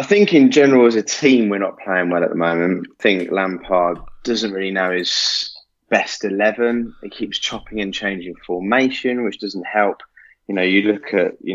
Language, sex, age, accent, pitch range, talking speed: English, male, 20-39, British, 90-115 Hz, 195 wpm